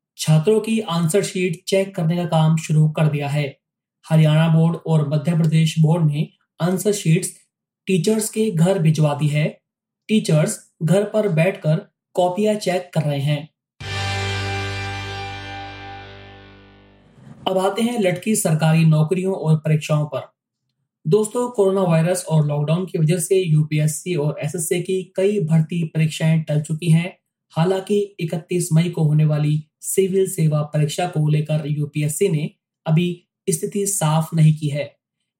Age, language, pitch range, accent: 20-39, Hindi, 155-185 Hz, native